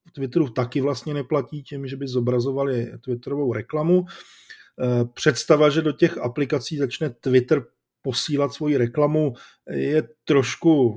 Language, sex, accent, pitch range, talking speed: Czech, male, native, 120-140 Hz, 120 wpm